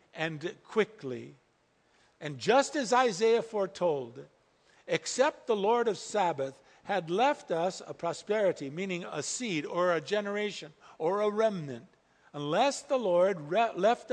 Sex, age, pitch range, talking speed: male, 50-69, 140-180 Hz, 125 wpm